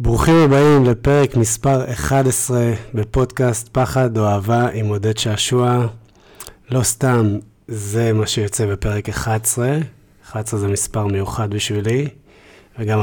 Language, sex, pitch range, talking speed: Hebrew, male, 105-125 Hz, 115 wpm